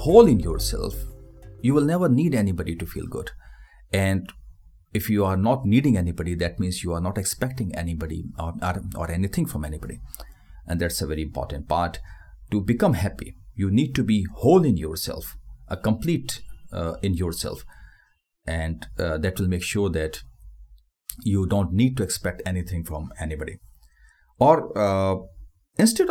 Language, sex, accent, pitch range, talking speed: Hindi, male, native, 80-105 Hz, 160 wpm